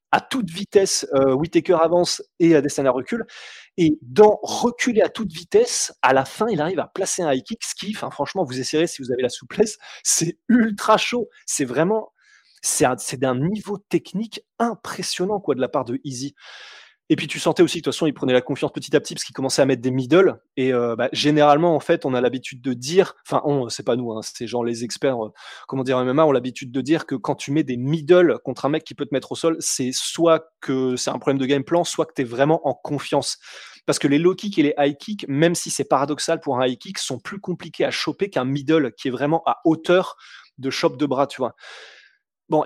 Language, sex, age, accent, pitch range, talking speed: French, male, 20-39, French, 130-170 Hz, 240 wpm